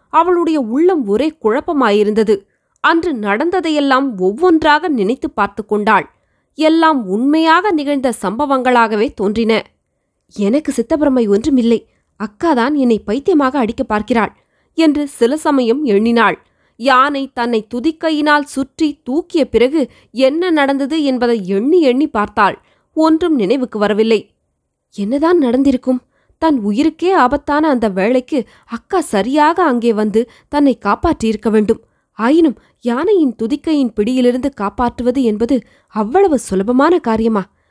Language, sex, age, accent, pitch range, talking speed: Tamil, female, 20-39, native, 225-295 Hz, 100 wpm